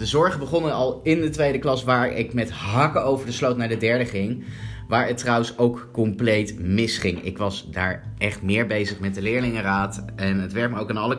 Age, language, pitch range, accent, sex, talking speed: 30-49, Dutch, 100-125 Hz, Dutch, male, 220 wpm